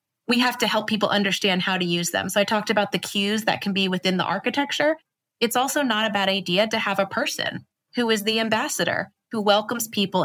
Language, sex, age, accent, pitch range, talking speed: English, female, 20-39, American, 180-220 Hz, 230 wpm